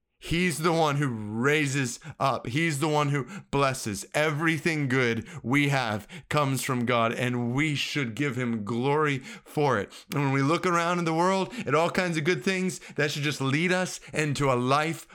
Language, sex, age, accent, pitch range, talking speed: English, male, 30-49, American, 140-180 Hz, 190 wpm